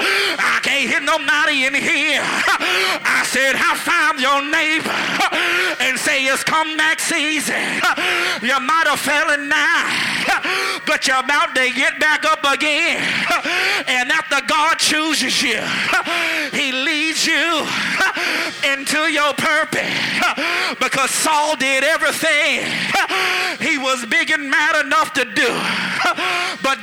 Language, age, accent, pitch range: English, 40-59, American, 275-315 Hz